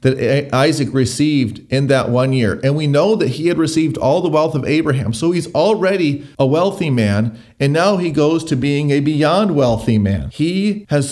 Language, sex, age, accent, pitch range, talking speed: English, male, 40-59, American, 125-160 Hz, 200 wpm